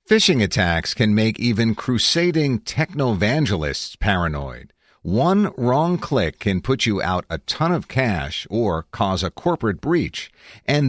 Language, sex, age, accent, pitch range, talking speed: English, male, 50-69, American, 90-130 Hz, 140 wpm